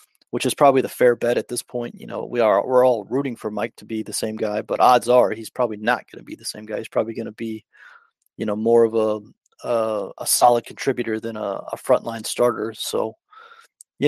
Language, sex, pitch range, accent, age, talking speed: English, male, 120-135 Hz, American, 30-49, 240 wpm